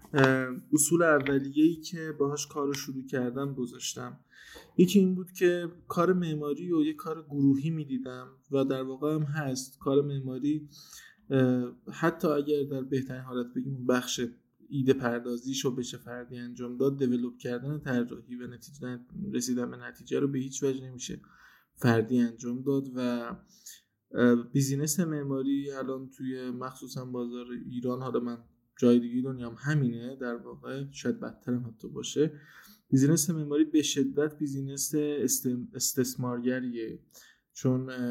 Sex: male